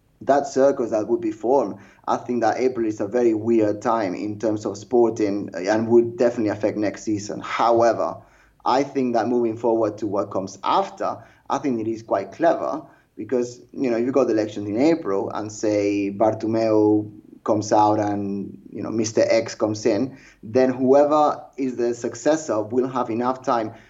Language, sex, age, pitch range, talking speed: English, male, 20-39, 110-130 Hz, 180 wpm